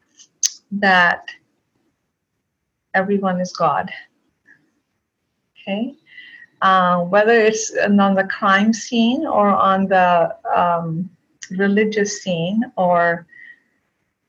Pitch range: 180-215 Hz